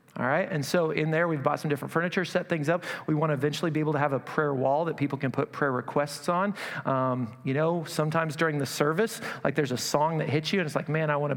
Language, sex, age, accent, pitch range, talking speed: English, male, 40-59, American, 135-165 Hz, 270 wpm